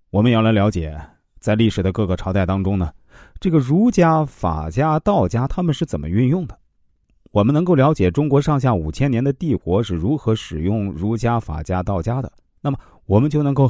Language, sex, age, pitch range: Chinese, male, 30-49, 90-145 Hz